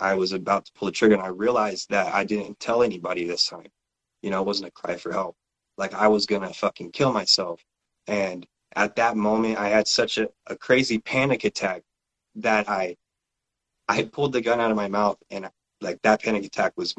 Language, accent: English, American